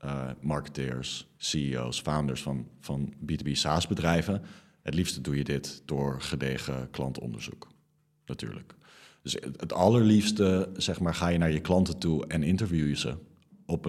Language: English